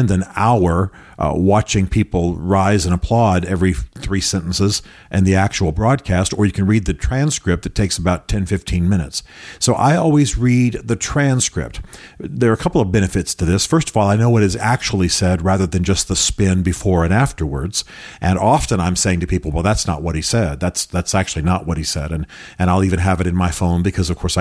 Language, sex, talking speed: English, male, 215 wpm